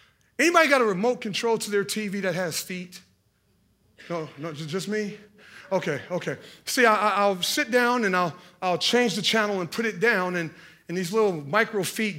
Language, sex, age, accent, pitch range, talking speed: English, male, 30-49, American, 195-250 Hz, 185 wpm